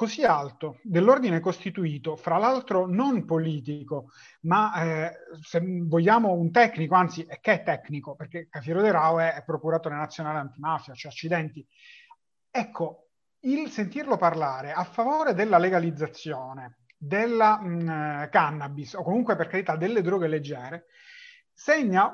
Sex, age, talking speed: male, 30-49, 135 wpm